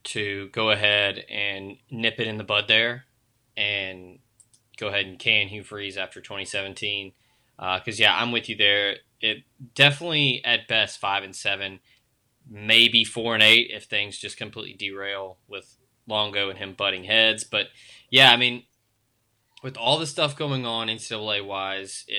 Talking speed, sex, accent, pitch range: 170 wpm, male, American, 100-120 Hz